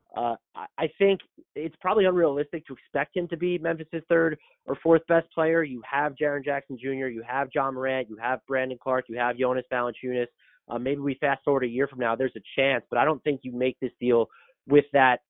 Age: 30-49